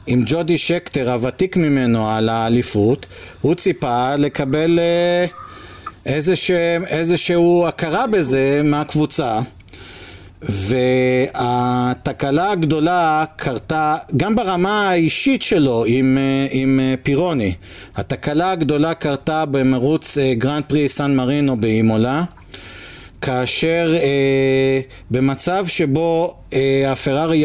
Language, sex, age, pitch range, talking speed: Hebrew, male, 50-69, 130-180 Hz, 85 wpm